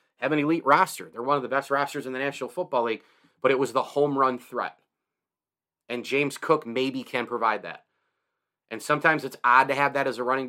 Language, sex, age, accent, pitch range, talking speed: English, male, 30-49, American, 120-140 Hz, 225 wpm